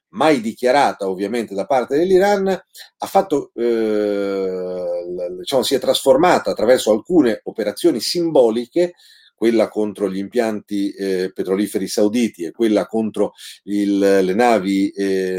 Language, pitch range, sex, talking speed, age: Italian, 100-140 Hz, male, 110 wpm, 40-59